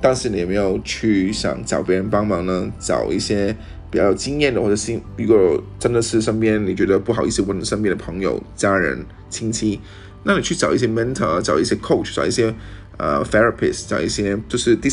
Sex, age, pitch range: male, 20-39, 90-115 Hz